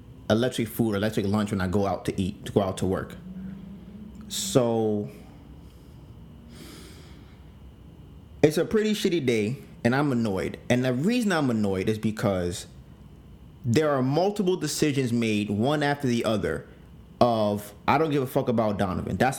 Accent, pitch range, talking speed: American, 110-160 Hz, 150 wpm